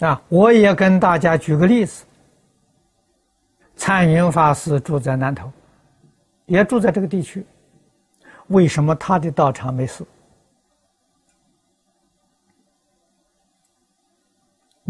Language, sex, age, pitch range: Chinese, male, 60-79, 145-190 Hz